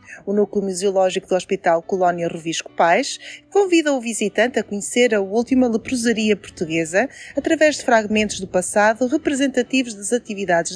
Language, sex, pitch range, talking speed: Portuguese, female, 190-255 Hz, 140 wpm